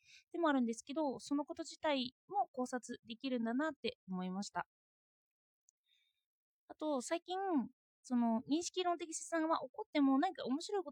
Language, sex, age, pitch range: Japanese, female, 20-39, 230-325 Hz